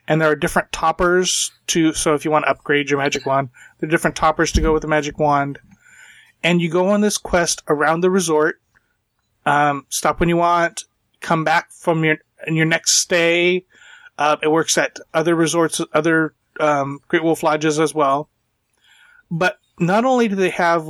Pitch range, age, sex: 150-180 Hz, 30-49, male